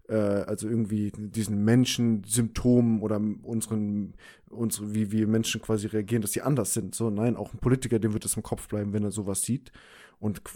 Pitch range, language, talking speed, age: 110-125 Hz, German, 180 wpm, 20-39